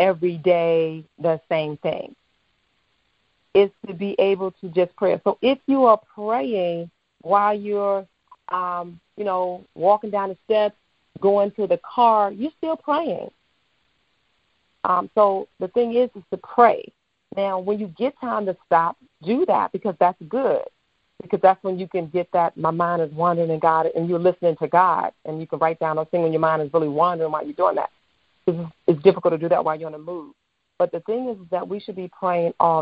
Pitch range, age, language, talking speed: 165-210 Hz, 40-59, English, 195 wpm